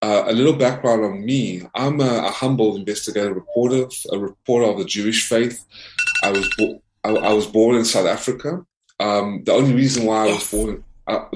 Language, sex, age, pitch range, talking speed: English, male, 20-39, 105-125 Hz, 195 wpm